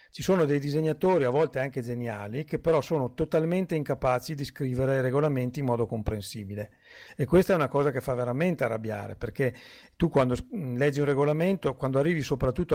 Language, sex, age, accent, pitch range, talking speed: Italian, male, 50-69, native, 125-170 Hz, 180 wpm